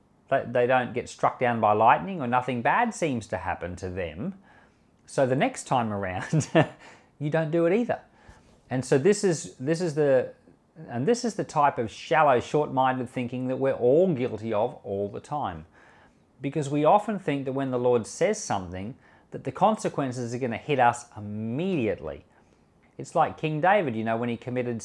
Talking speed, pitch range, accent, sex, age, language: 175 wpm, 110-160 Hz, Australian, male, 40-59, English